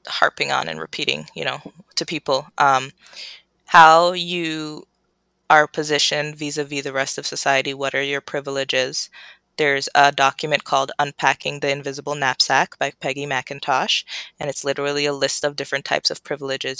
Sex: female